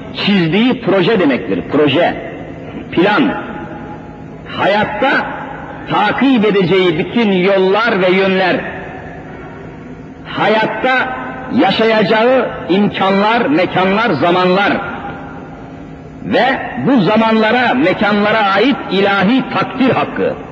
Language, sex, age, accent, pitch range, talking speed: Turkish, male, 50-69, native, 195-250 Hz, 75 wpm